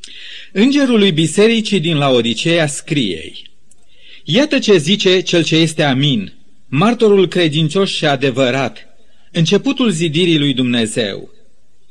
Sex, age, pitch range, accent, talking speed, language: male, 40-59, 150-205 Hz, native, 105 wpm, Romanian